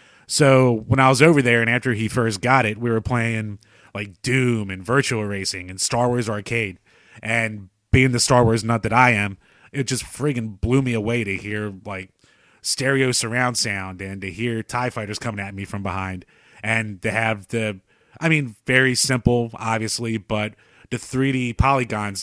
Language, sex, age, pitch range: English, male, 30-49, 105-130 Hz